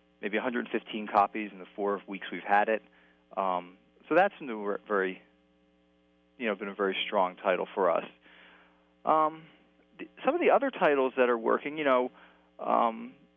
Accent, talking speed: American, 170 wpm